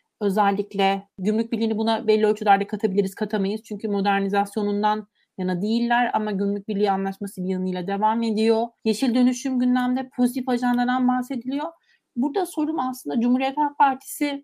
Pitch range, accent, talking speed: 205-245 Hz, native, 135 wpm